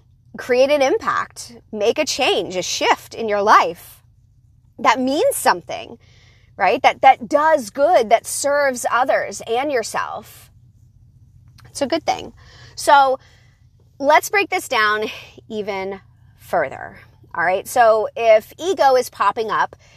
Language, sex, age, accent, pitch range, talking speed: English, female, 30-49, American, 210-280 Hz, 130 wpm